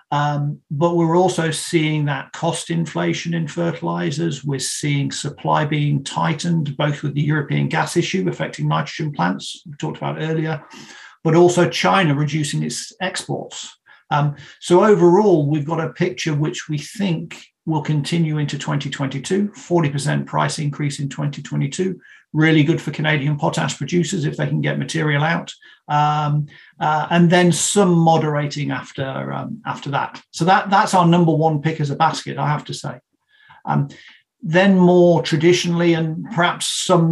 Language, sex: English, male